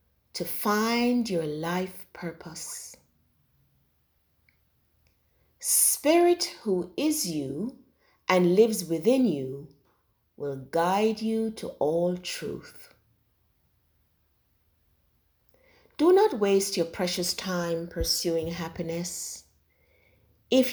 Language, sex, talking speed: English, female, 80 wpm